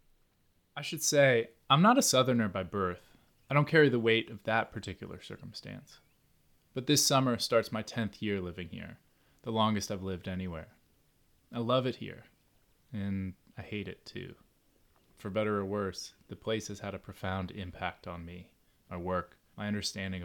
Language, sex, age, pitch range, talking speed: English, male, 20-39, 95-120 Hz, 170 wpm